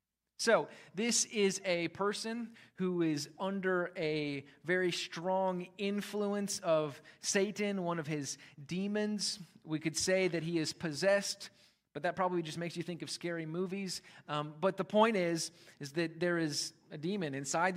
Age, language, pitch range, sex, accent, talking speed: 30-49, English, 155-190 Hz, male, American, 160 wpm